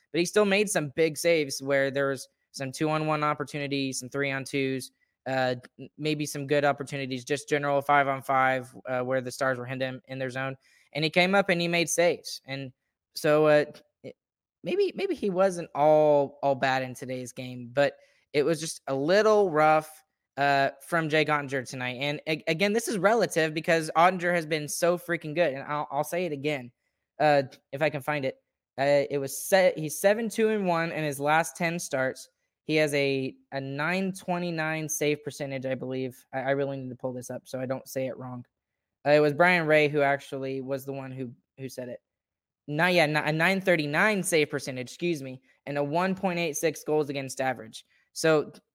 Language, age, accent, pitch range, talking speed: English, 10-29, American, 135-165 Hz, 200 wpm